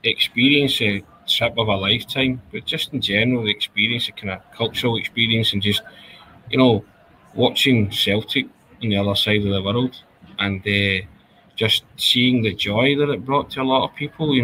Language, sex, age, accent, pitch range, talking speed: English, male, 20-39, British, 110-130 Hz, 185 wpm